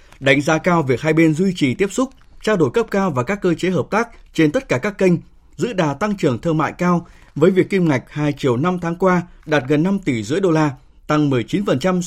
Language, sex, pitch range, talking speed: Vietnamese, male, 140-180 Hz, 250 wpm